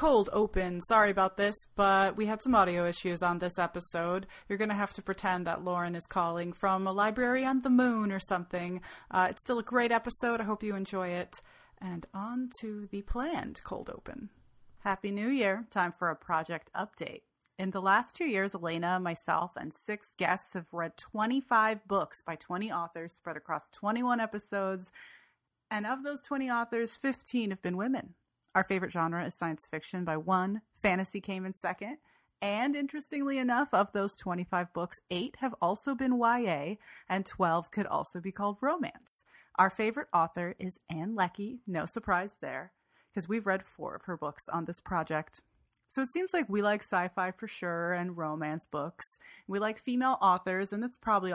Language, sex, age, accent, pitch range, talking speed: English, female, 30-49, American, 175-225 Hz, 185 wpm